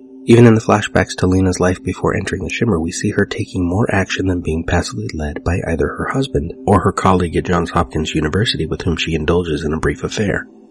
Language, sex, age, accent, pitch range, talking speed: English, male, 30-49, American, 85-115 Hz, 225 wpm